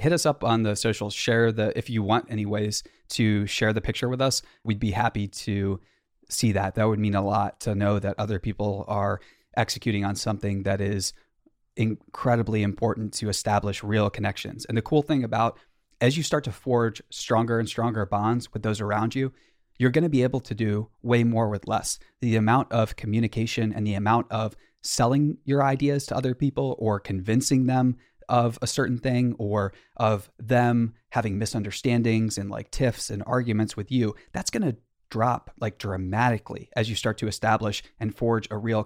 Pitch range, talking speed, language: 105-125 Hz, 190 wpm, English